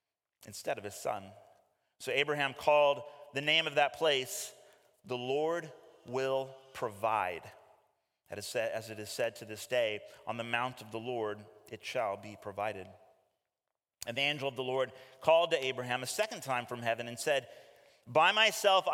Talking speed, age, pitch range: 160 wpm, 30-49, 125-175 Hz